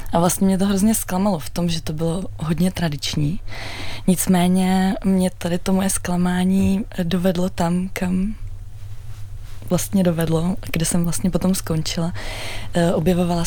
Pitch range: 155-180 Hz